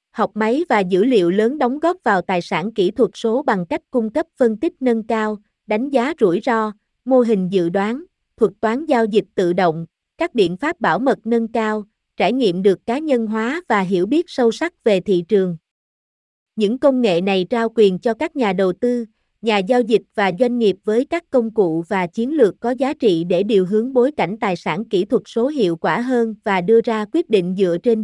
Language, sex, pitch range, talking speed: Vietnamese, female, 195-250 Hz, 225 wpm